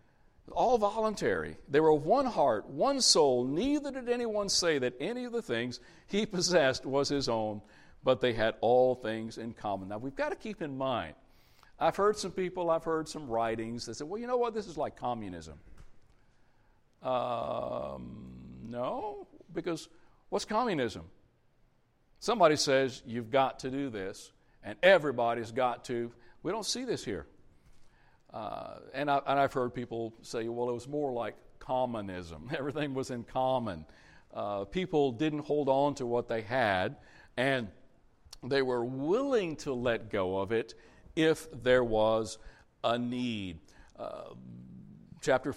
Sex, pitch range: male, 115-155 Hz